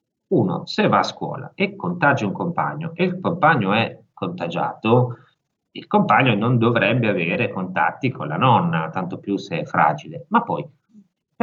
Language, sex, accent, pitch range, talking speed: Italian, male, native, 100-165 Hz, 165 wpm